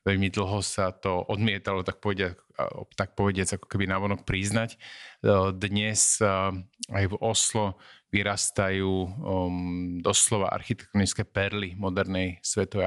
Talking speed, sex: 95 wpm, male